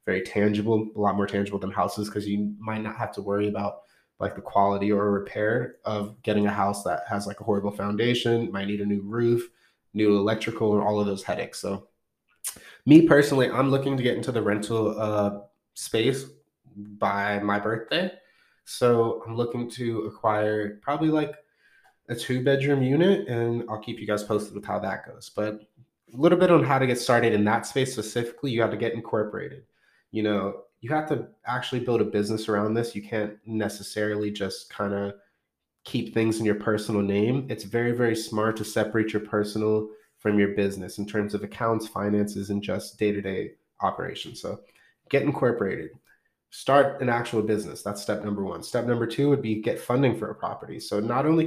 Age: 20-39